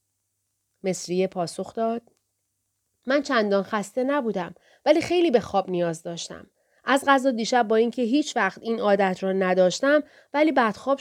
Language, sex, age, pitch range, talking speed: Persian, female, 30-49, 180-255 Hz, 140 wpm